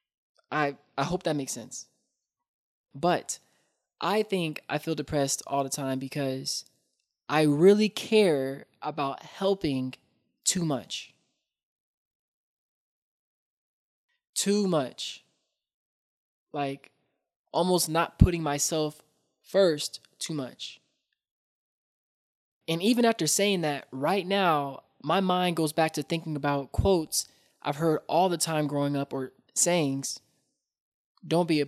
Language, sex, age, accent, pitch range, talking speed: English, male, 20-39, American, 145-185 Hz, 115 wpm